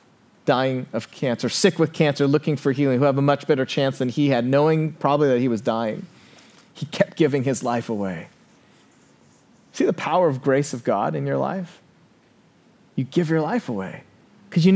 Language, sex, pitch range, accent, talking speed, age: English, male, 140-190 Hz, American, 190 wpm, 30-49